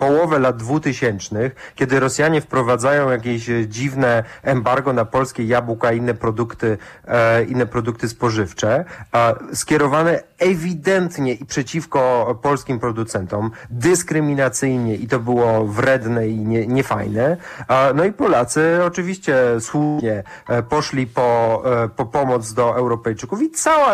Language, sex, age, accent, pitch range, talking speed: Polish, male, 30-49, native, 115-145 Hz, 110 wpm